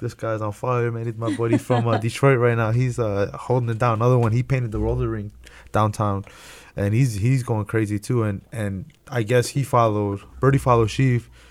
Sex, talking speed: male, 215 wpm